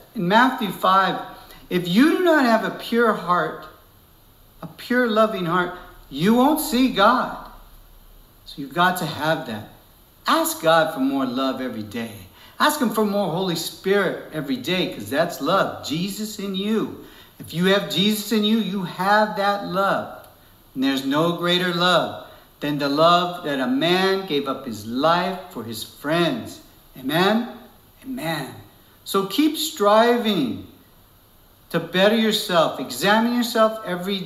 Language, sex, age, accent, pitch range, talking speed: English, male, 60-79, American, 165-240 Hz, 150 wpm